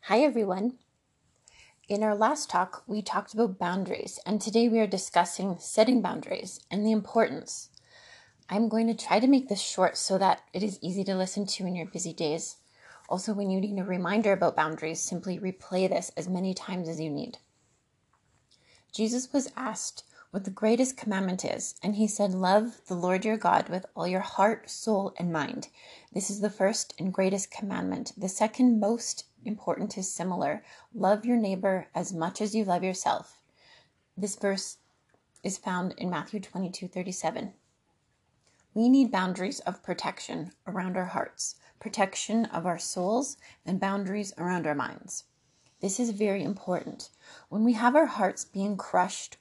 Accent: American